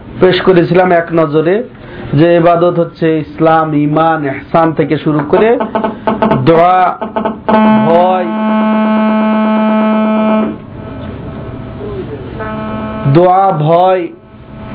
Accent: native